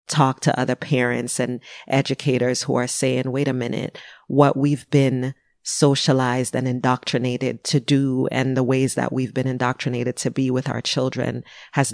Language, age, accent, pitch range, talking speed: English, 30-49, American, 125-145 Hz, 165 wpm